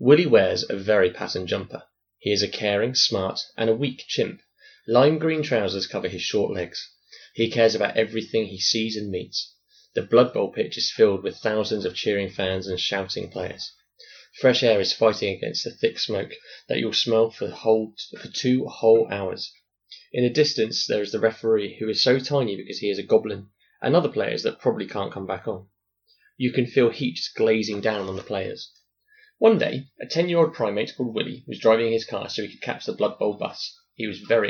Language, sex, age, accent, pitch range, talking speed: English, male, 20-39, British, 105-135 Hz, 205 wpm